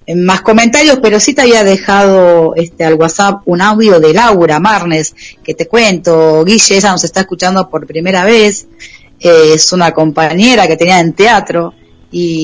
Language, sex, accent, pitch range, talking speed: Spanish, female, Argentinian, 165-200 Hz, 170 wpm